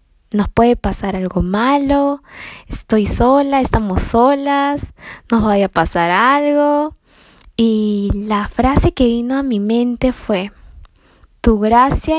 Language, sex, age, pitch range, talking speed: Spanish, female, 10-29, 210-260 Hz, 125 wpm